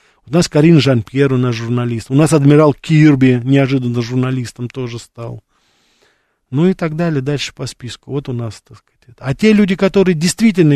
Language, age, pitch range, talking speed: Russian, 40-59, 120-150 Hz, 180 wpm